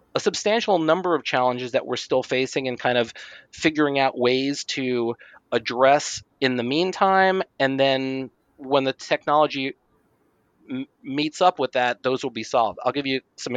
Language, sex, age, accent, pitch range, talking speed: English, male, 30-49, American, 120-150 Hz, 170 wpm